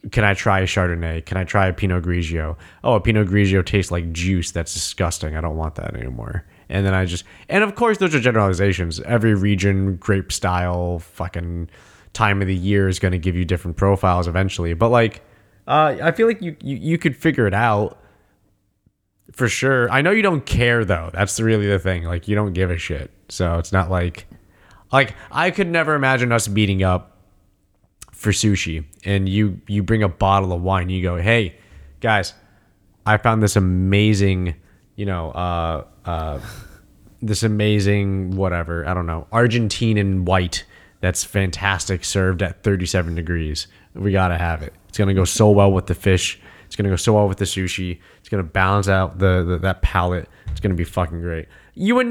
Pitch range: 90-105 Hz